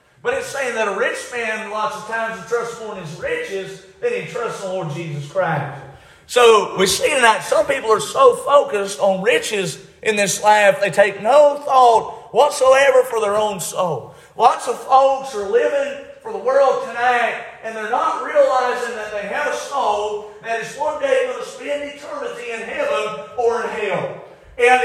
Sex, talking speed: male, 185 wpm